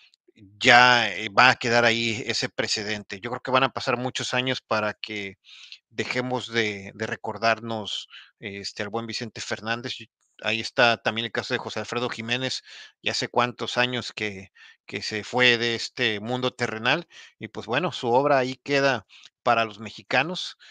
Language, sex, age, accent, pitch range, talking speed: Spanish, male, 40-59, Mexican, 110-130 Hz, 165 wpm